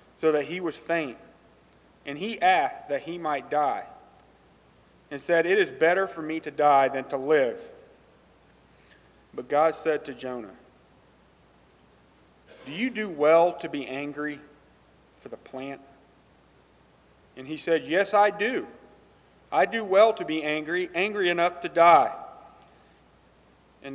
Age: 40-59